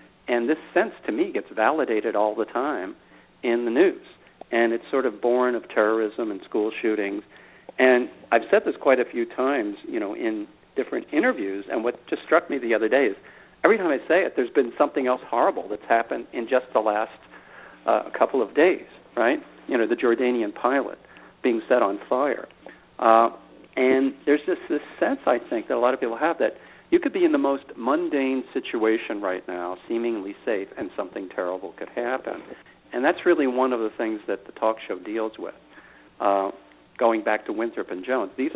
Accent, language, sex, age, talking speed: American, English, male, 50-69, 200 wpm